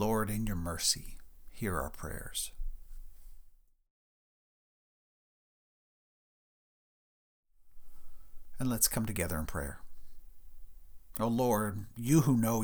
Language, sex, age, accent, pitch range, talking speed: English, male, 50-69, American, 80-105 Hz, 85 wpm